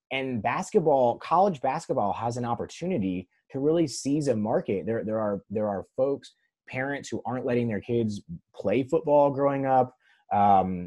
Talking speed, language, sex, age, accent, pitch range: 160 wpm, English, male, 20-39, American, 95-125 Hz